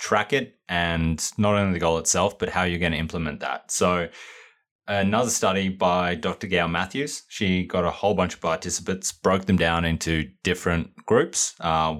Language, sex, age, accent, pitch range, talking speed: English, male, 20-39, Australian, 85-105 Hz, 180 wpm